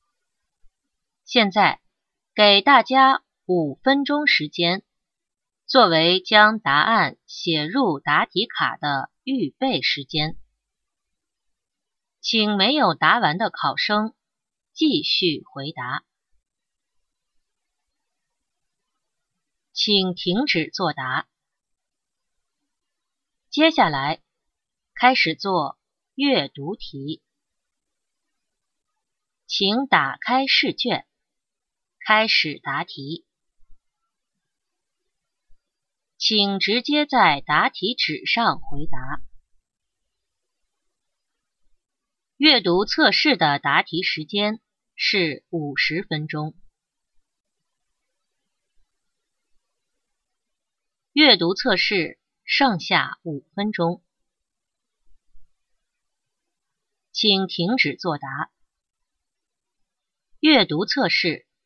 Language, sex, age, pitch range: English, female, 30-49, 170-265 Hz